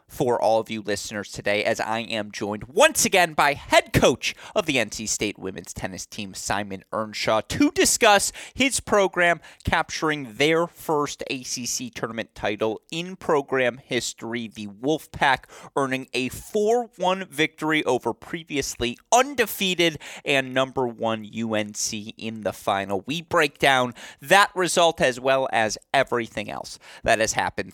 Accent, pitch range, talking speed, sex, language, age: American, 105-160 Hz, 145 wpm, male, English, 30-49